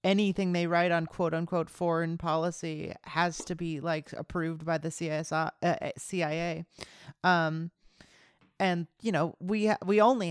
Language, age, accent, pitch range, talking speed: English, 40-59, American, 165-195 Hz, 135 wpm